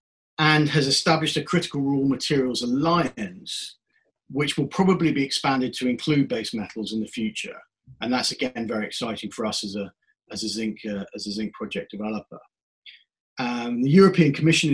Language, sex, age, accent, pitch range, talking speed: English, male, 40-59, British, 125-165 Hz, 175 wpm